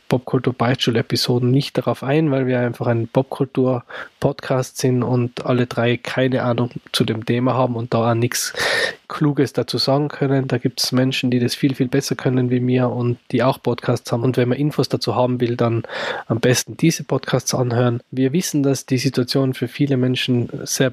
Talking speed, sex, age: 190 wpm, male, 20-39